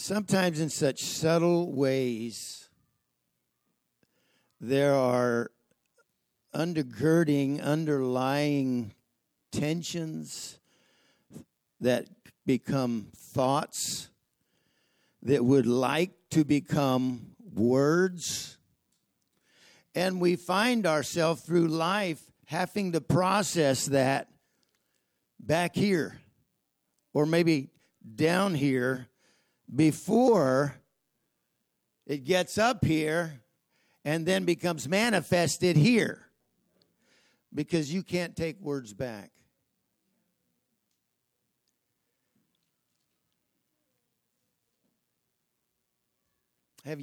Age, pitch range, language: 60-79, 130-175 Hz, English